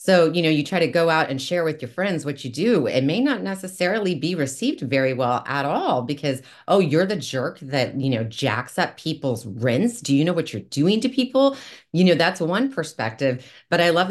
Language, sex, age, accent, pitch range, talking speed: English, female, 30-49, American, 130-170 Hz, 230 wpm